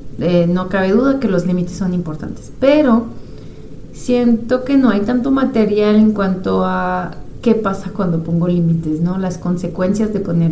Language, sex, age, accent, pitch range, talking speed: Spanish, female, 30-49, Mexican, 175-215 Hz, 165 wpm